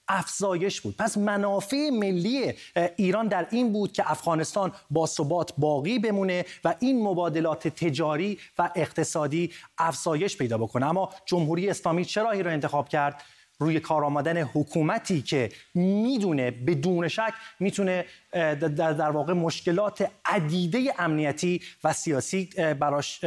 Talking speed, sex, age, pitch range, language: 125 wpm, male, 30-49, 155-195 Hz, Persian